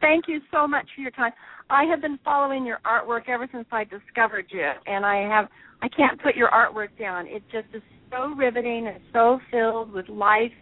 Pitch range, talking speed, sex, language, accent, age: 205-250 Hz, 210 wpm, female, English, American, 40-59